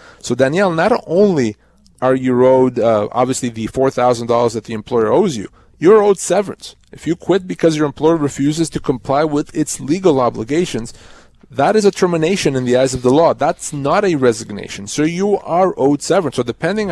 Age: 30-49